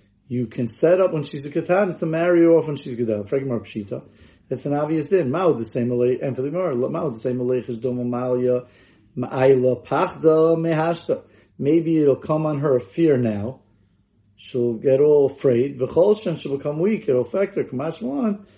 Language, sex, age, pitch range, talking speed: English, male, 40-59, 115-160 Hz, 180 wpm